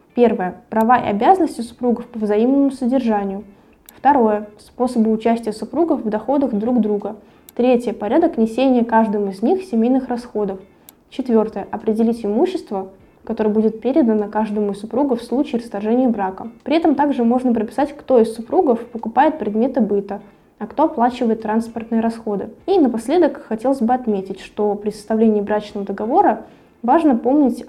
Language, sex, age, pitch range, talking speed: Russian, female, 20-39, 210-255 Hz, 140 wpm